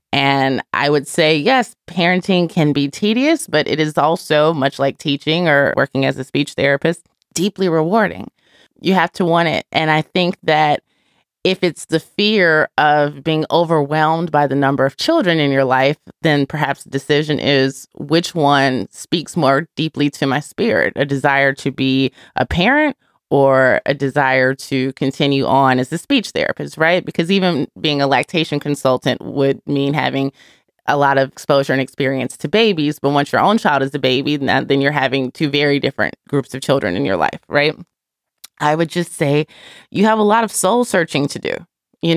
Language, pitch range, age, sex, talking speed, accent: English, 135-170 Hz, 20-39, female, 185 wpm, American